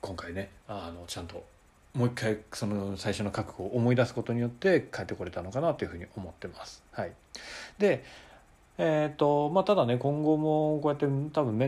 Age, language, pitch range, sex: 40-59, Japanese, 95-135 Hz, male